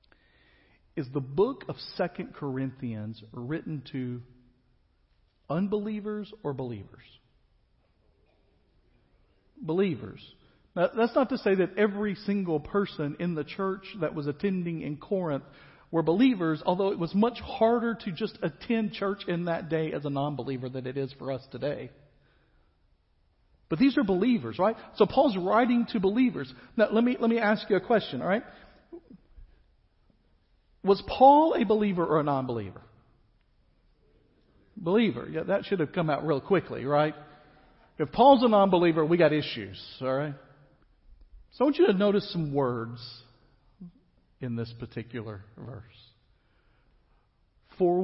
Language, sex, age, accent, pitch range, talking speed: English, male, 50-69, American, 120-200 Hz, 140 wpm